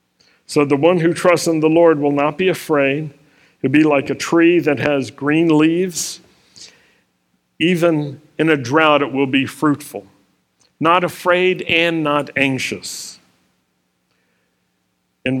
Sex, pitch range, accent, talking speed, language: male, 125-170 Hz, American, 135 wpm, English